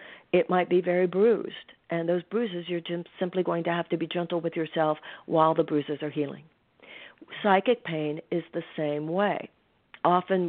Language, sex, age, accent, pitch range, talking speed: English, female, 50-69, American, 160-180 Hz, 170 wpm